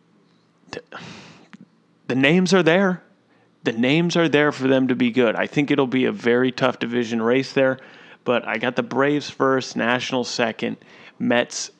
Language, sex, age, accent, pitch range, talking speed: English, male, 30-49, American, 120-145 Hz, 165 wpm